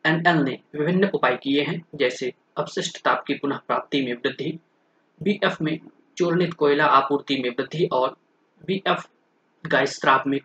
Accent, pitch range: native, 140-170 Hz